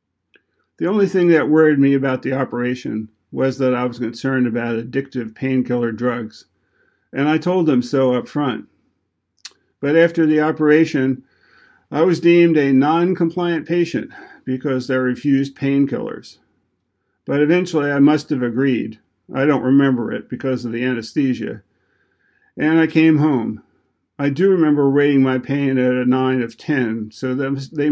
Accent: American